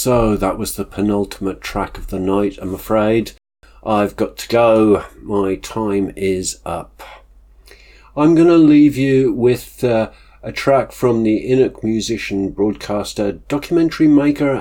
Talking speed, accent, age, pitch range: 145 wpm, British, 50-69, 95-125 Hz